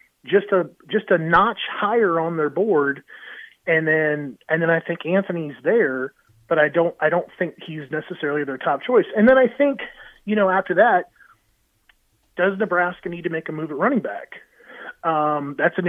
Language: English